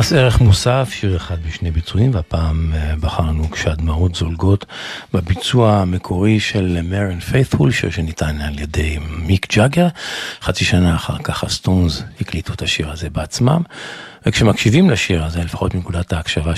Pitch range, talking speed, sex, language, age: 85-120 Hz, 135 wpm, male, Hebrew, 50-69